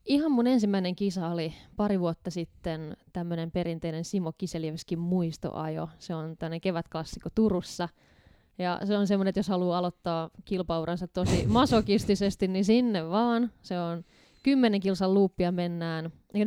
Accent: native